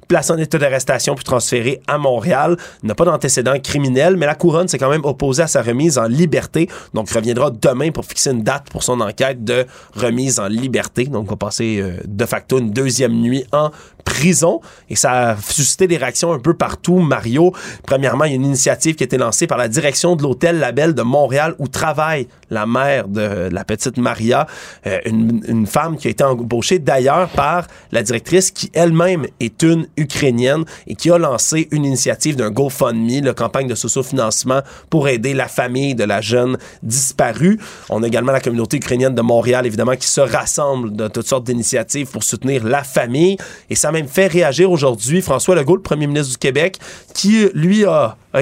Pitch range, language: 120-165 Hz, French